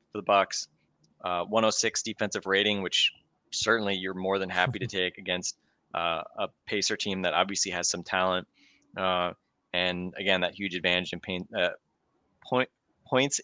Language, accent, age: English, American, 20-39